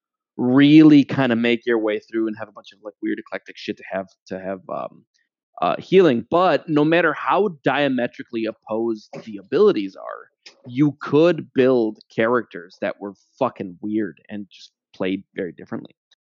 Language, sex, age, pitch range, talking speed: English, male, 30-49, 110-150 Hz, 165 wpm